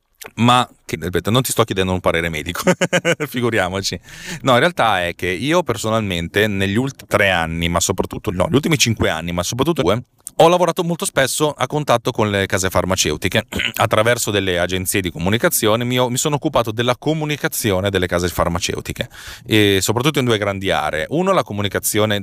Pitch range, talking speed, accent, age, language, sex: 90-120 Hz, 165 wpm, native, 30-49, Italian, male